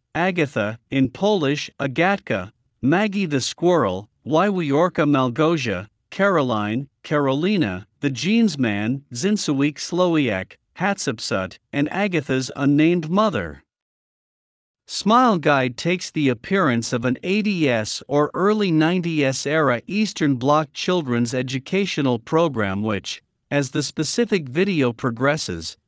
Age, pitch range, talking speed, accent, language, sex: 60-79, 125-180 Hz, 100 wpm, American, Italian, male